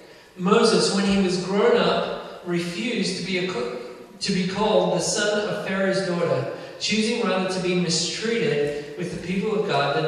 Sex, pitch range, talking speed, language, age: male, 175-215 Hz, 180 wpm, English, 40-59